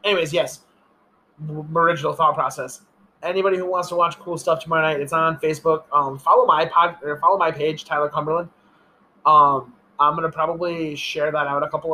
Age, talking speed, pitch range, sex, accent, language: 20-39, 185 wpm, 150-175 Hz, male, American, English